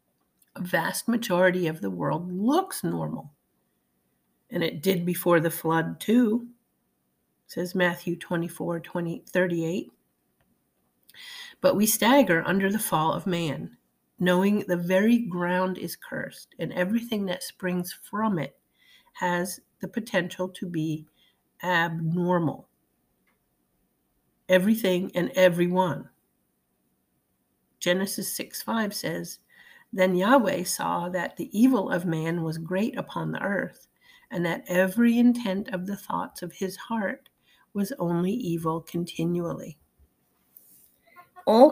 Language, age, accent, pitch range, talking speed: English, 50-69, American, 165-215 Hz, 115 wpm